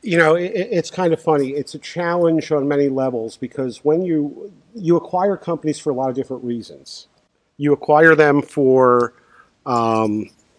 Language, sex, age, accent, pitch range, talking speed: English, male, 50-69, American, 130-150 Hz, 170 wpm